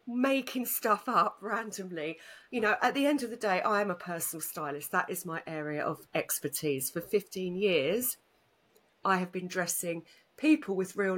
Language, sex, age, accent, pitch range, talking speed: English, female, 40-59, British, 170-220 Hz, 175 wpm